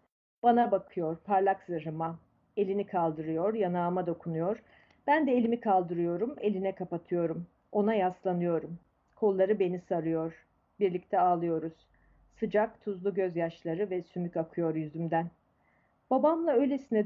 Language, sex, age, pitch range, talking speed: Turkish, female, 40-59, 175-215 Hz, 105 wpm